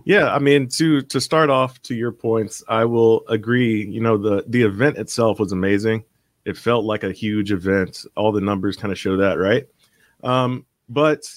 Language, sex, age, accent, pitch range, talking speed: English, male, 30-49, American, 110-135 Hz, 195 wpm